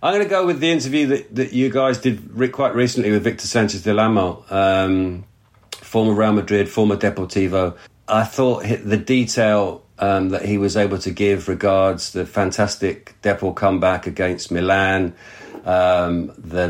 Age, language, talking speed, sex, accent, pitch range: 50-69, English, 170 wpm, male, British, 90-105 Hz